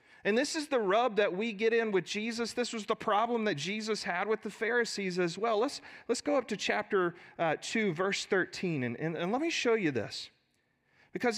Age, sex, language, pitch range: 40-59, male, English, 145-220 Hz